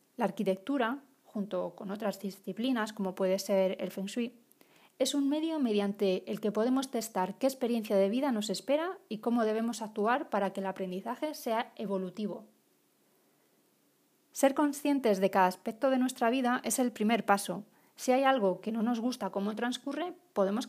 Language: Spanish